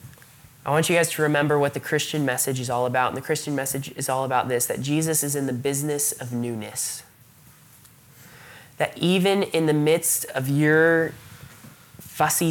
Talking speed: 175 wpm